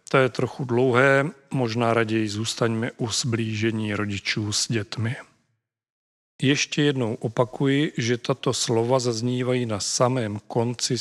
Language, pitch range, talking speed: Czech, 115-135 Hz, 120 wpm